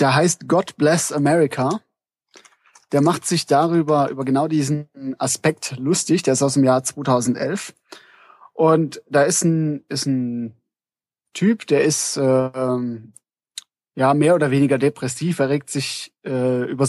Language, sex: German, male